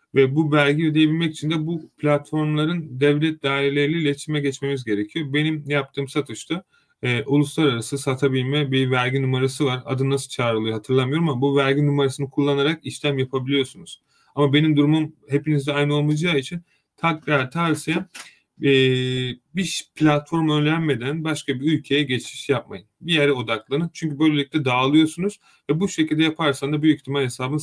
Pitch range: 135-155 Hz